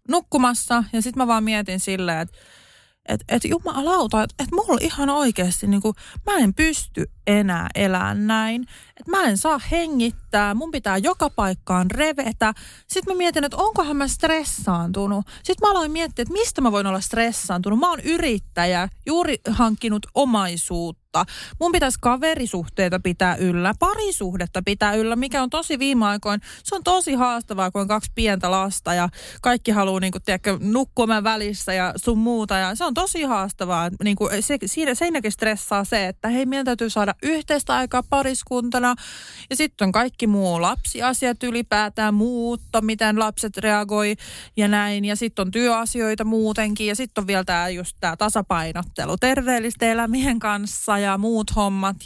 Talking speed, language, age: 160 wpm, Finnish, 30-49